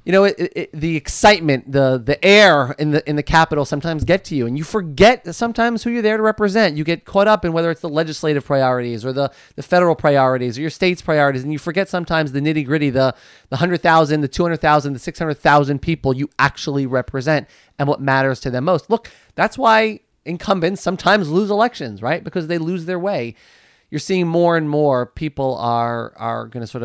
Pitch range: 130-170 Hz